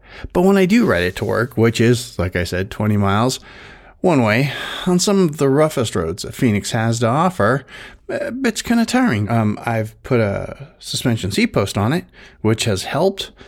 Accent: American